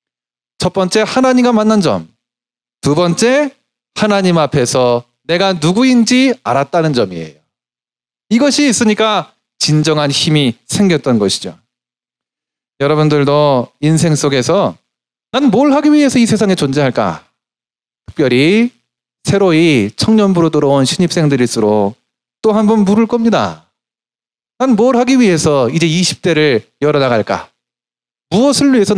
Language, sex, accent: Korean, male, native